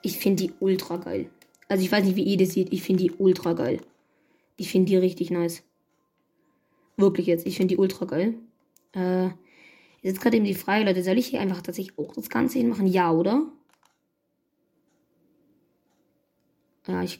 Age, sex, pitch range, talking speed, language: 20-39, female, 185-245 Hz, 180 wpm, German